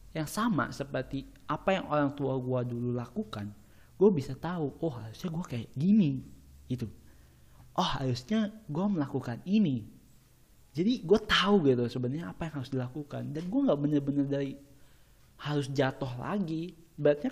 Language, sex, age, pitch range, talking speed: Indonesian, male, 20-39, 125-170 Hz, 145 wpm